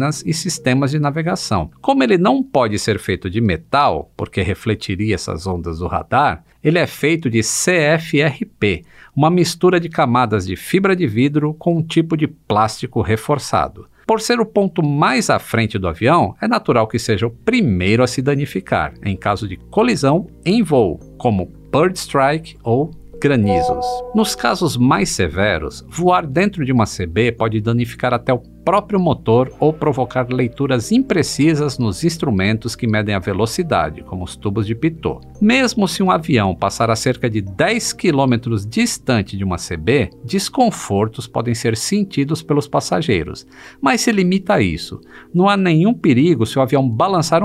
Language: Portuguese